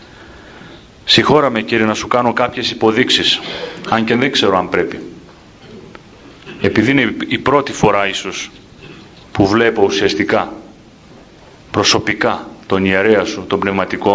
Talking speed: 120 wpm